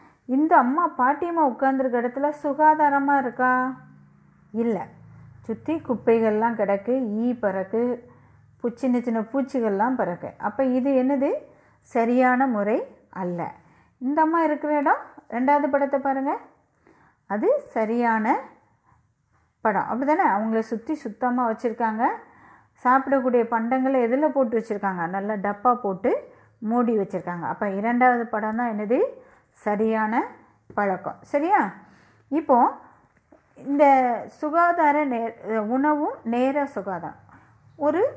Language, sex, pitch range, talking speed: Tamil, female, 210-280 Hz, 100 wpm